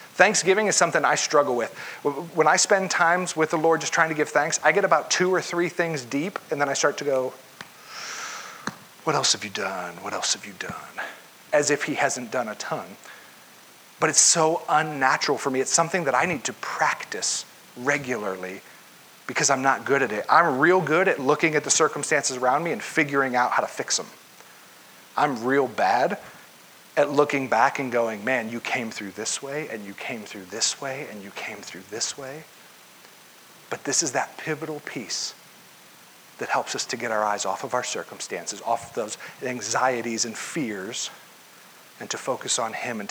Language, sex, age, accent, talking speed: English, male, 40-59, American, 195 wpm